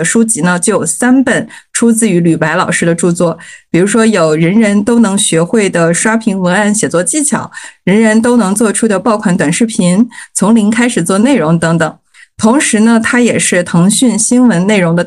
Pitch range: 180-230 Hz